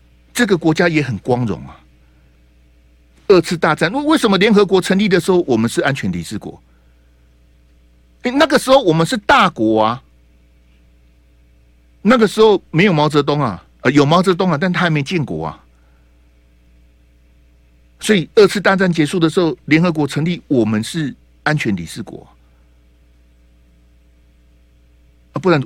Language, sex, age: Chinese, male, 60-79